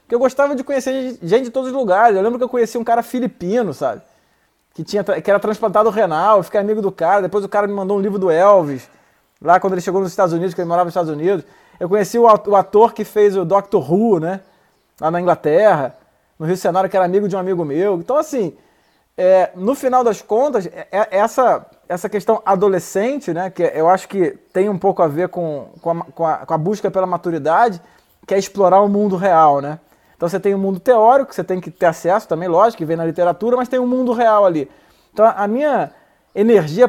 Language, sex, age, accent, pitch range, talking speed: Portuguese, male, 20-39, Brazilian, 180-230 Hz, 235 wpm